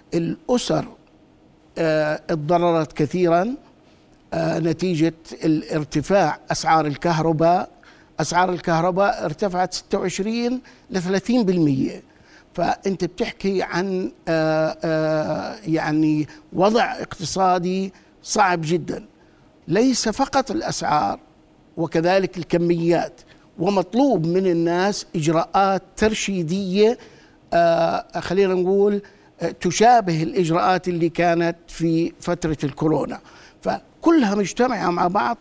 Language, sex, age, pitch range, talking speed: Arabic, male, 50-69, 165-190 Hz, 85 wpm